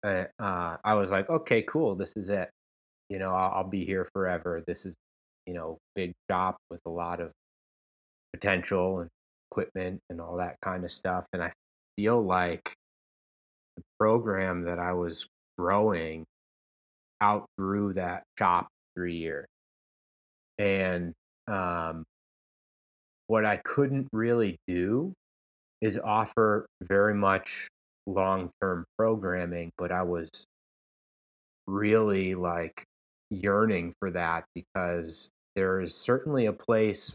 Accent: American